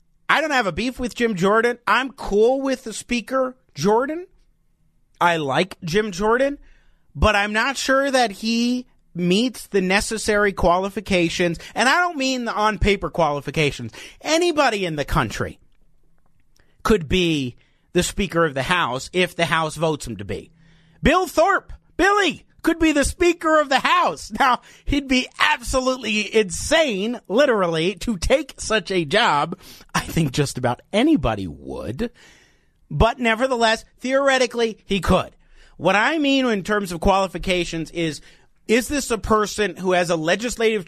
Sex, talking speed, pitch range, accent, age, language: male, 150 wpm, 165-240 Hz, American, 40-59, English